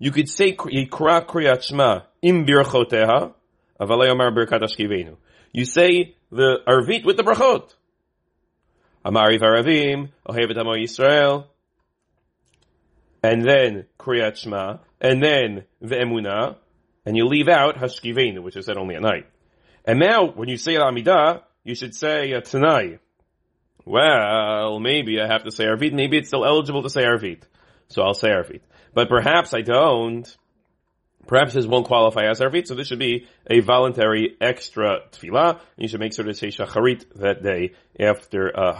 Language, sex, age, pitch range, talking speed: English, male, 30-49, 110-145 Hz, 125 wpm